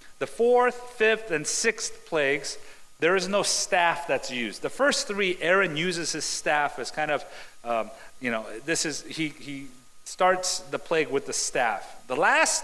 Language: English